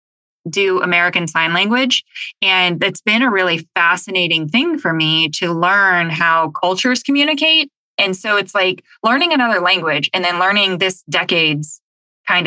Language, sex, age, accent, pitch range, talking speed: English, female, 20-39, American, 165-195 Hz, 150 wpm